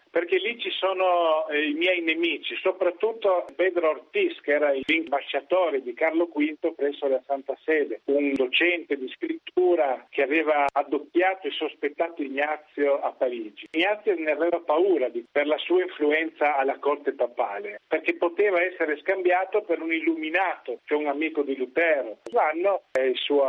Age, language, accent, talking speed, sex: 50-69, Italian, native, 155 wpm, male